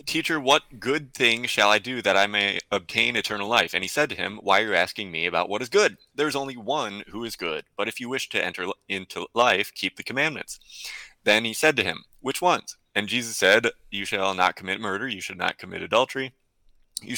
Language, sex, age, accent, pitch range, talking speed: English, male, 20-39, American, 100-125 Hz, 230 wpm